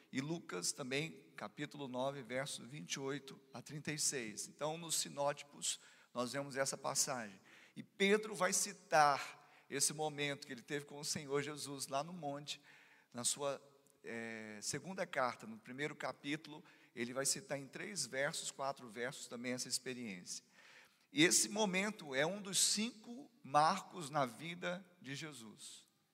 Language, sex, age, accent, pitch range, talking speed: Portuguese, male, 40-59, Brazilian, 135-180 Hz, 140 wpm